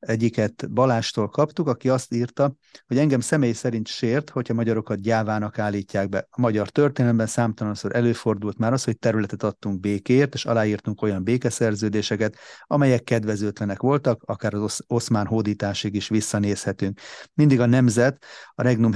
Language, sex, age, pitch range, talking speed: Hungarian, male, 30-49, 110-125 Hz, 145 wpm